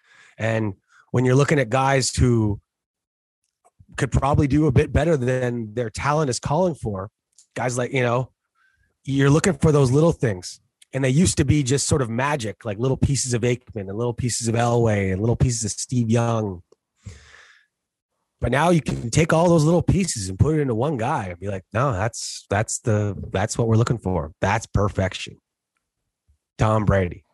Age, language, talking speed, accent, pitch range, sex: 30-49, English, 190 wpm, American, 115-150 Hz, male